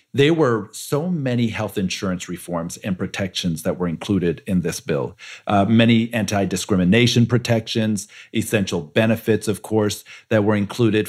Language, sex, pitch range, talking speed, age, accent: English, male, 105-135 Hz, 140 wpm, 50-69, American